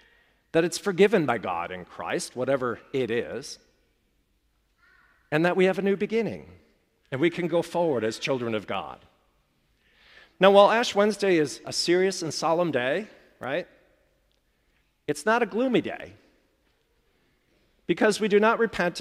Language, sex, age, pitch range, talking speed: English, male, 40-59, 130-190 Hz, 150 wpm